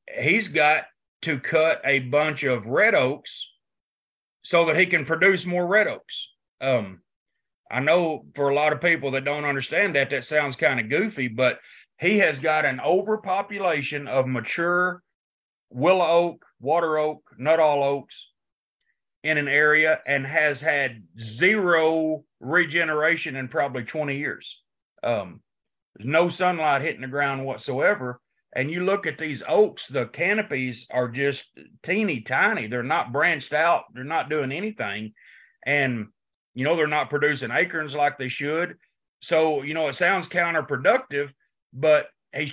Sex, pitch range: male, 135-165 Hz